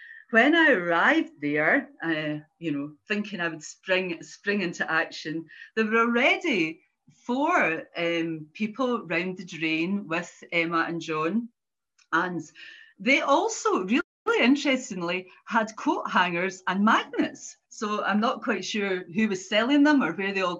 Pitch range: 175-255 Hz